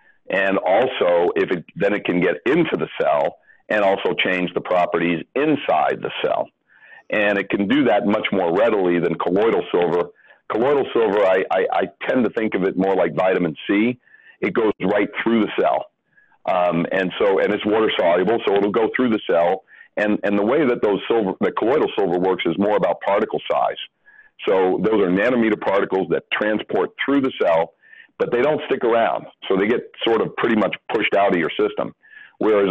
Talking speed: 195 wpm